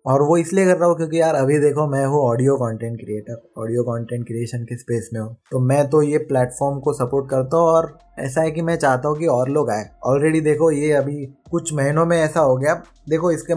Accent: native